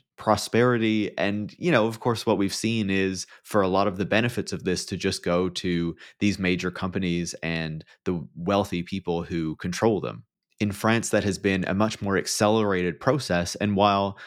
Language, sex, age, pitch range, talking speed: English, male, 20-39, 95-110 Hz, 185 wpm